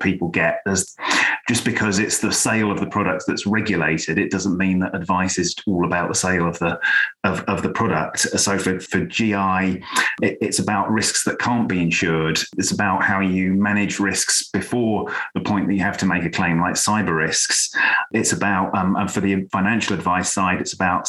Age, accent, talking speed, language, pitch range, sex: 30-49, British, 200 wpm, English, 95-105 Hz, male